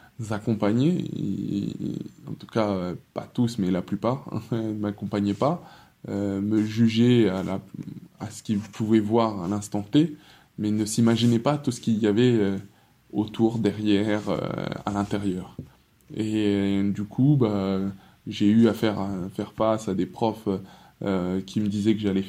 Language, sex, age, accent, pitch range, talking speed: French, male, 20-39, French, 100-115 Hz, 170 wpm